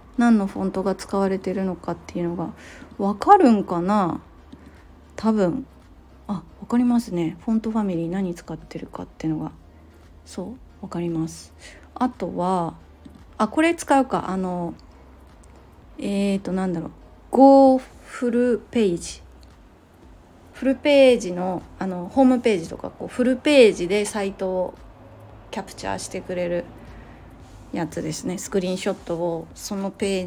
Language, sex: Japanese, female